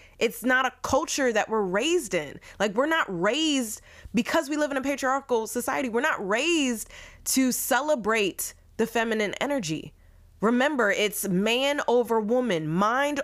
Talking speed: 150 wpm